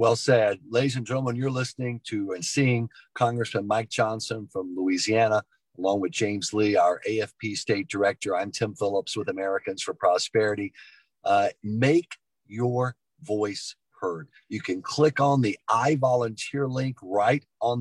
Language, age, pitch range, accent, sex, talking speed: English, 40-59, 115-150 Hz, American, male, 150 wpm